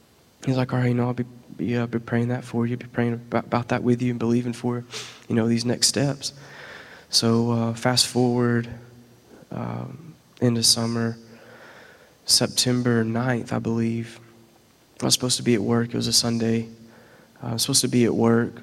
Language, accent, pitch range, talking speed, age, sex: English, American, 110-120 Hz, 195 wpm, 20-39, male